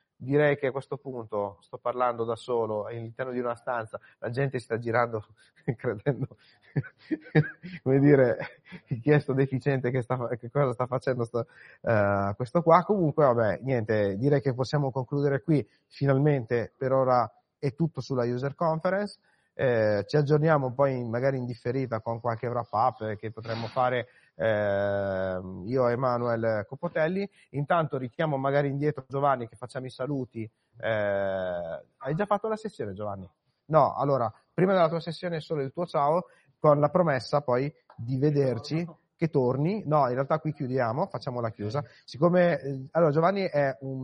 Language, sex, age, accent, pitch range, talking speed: Italian, male, 30-49, native, 120-150 Hz, 160 wpm